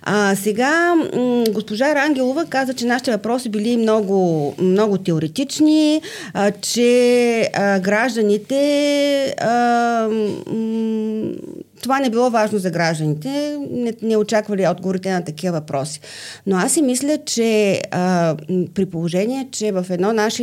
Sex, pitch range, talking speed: female, 180-235 Hz, 130 wpm